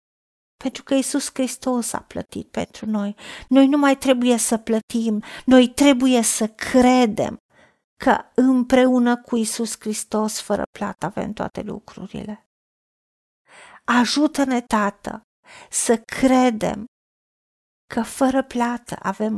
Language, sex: Romanian, female